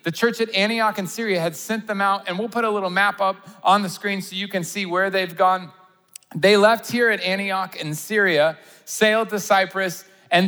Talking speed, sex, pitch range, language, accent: 220 wpm, male, 175-205 Hz, English, American